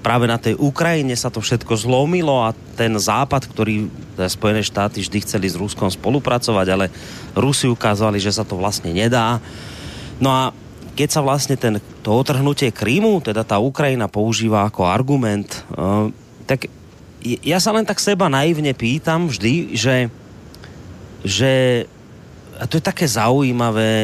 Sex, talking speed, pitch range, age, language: male, 145 wpm, 105-135 Hz, 30-49, Slovak